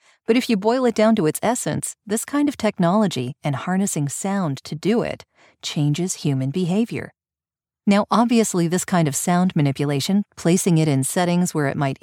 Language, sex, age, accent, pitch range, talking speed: English, female, 40-59, American, 150-210 Hz, 180 wpm